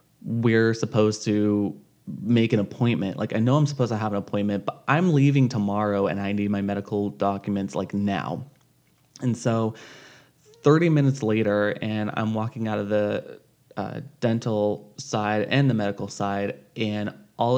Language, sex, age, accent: English, male, 20-39, American